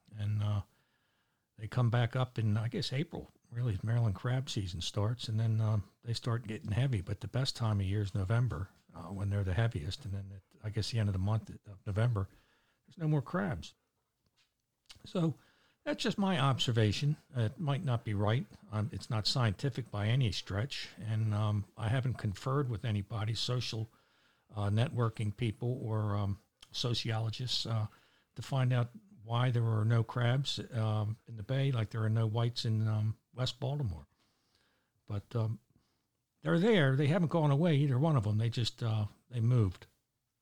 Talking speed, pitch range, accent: 180 wpm, 105-130 Hz, American